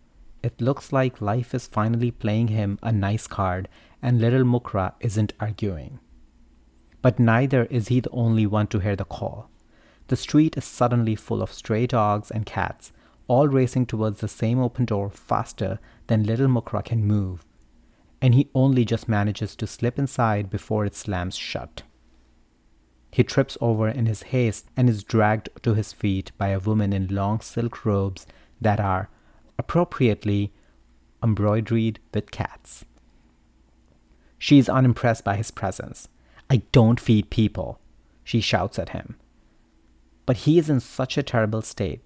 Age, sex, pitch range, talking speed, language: 30-49, male, 95-120 Hz, 155 wpm, English